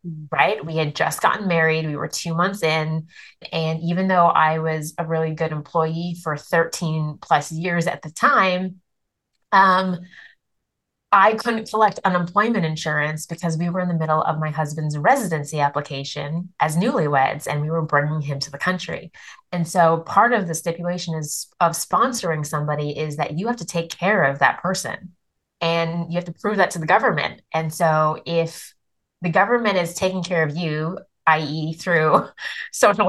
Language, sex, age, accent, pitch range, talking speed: English, female, 20-39, American, 155-185 Hz, 175 wpm